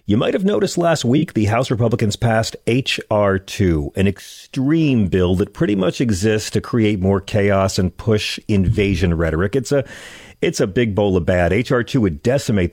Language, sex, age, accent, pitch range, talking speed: English, male, 40-59, American, 95-125 Hz, 175 wpm